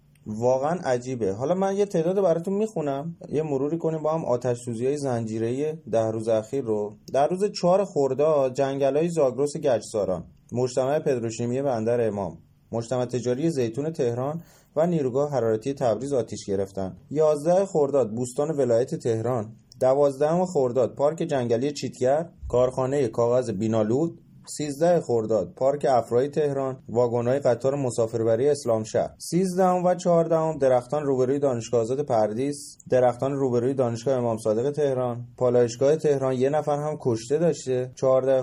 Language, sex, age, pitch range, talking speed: Persian, male, 30-49, 115-150 Hz, 135 wpm